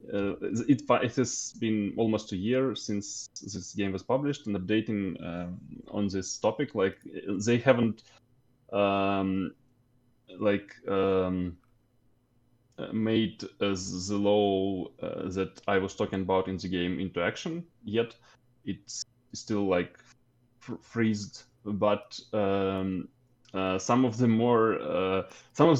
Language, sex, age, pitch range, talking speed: English, male, 20-39, 95-125 Hz, 130 wpm